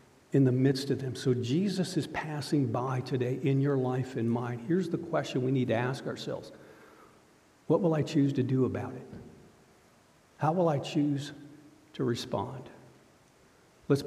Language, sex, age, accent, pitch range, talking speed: English, male, 60-79, American, 120-145 Hz, 165 wpm